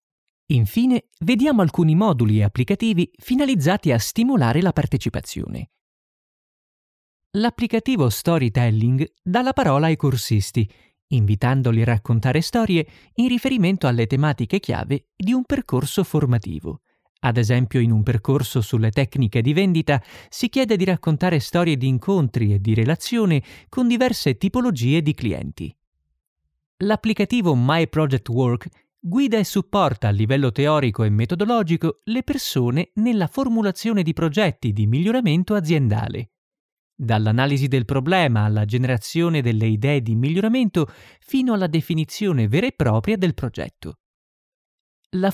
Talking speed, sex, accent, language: 125 wpm, male, native, Italian